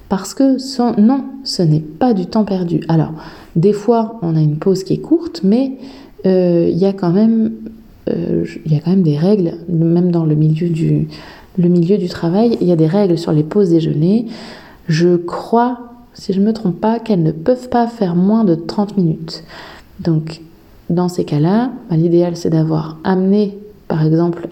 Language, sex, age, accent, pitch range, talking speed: French, female, 20-39, French, 170-220 Hz, 175 wpm